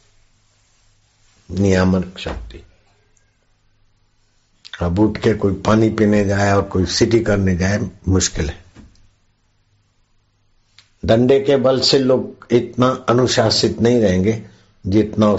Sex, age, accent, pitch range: male, 60-79, native, 95-110 Hz